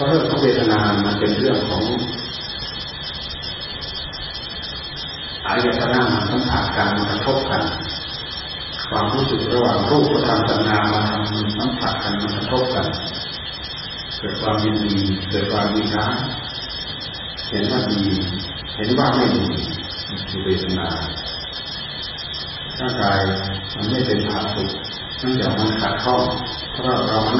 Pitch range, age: 95-115 Hz, 30-49